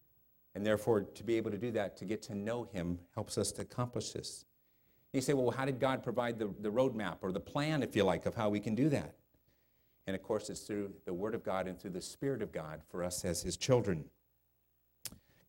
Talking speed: 235 wpm